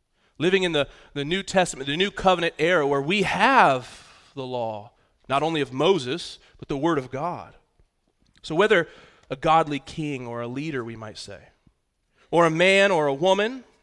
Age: 30-49